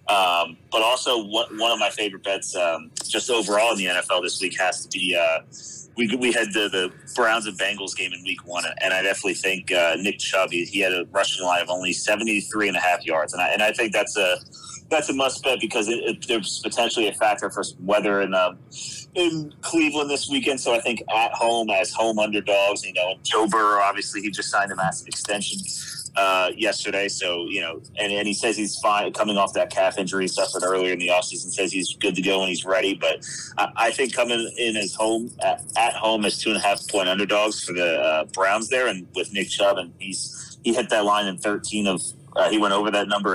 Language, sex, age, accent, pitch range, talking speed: English, male, 30-49, American, 95-110 Hz, 230 wpm